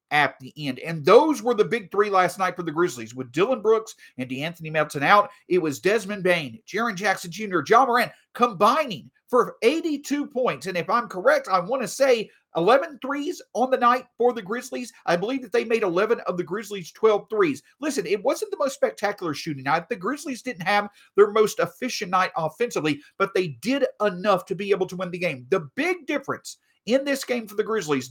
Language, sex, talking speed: English, male, 210 wpm